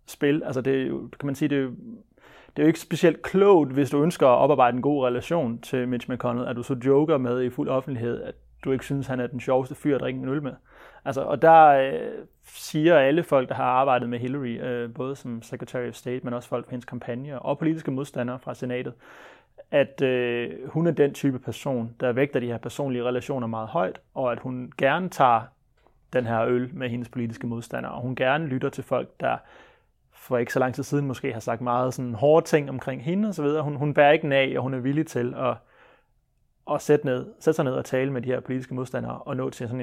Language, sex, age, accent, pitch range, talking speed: Danish, male, 30-49, native, 125-145 Hz, 215 wpm